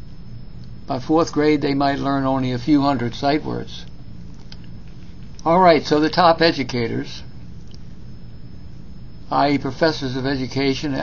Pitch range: 130-160 Hz